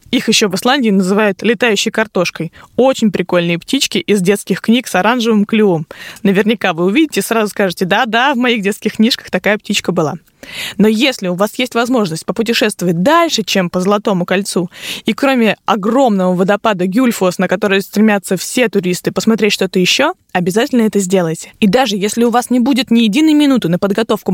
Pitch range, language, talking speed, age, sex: 190-240 Hz, Russian, 175 wpm, 20-39, female